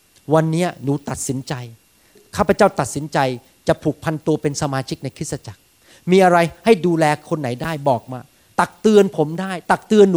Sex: male